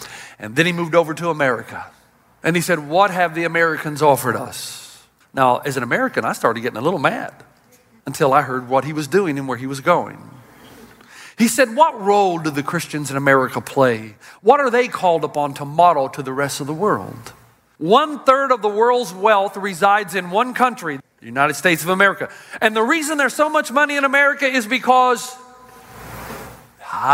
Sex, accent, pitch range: male, American, 165-250 Hz